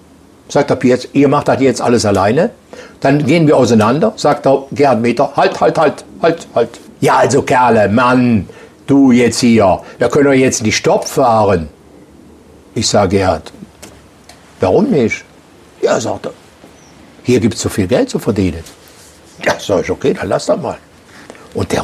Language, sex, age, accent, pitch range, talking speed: German, male, 60-79, German, 100-140 Hz, 180 wpm